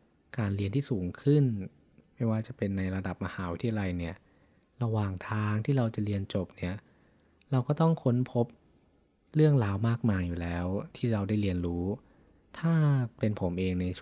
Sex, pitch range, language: male, 95-120 Hz, Thai